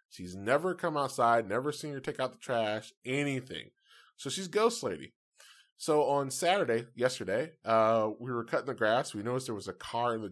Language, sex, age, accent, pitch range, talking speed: English, male, 20-39, American, 110-150 Hz, 200 wpm